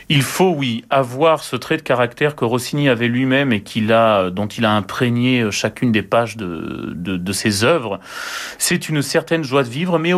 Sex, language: male, French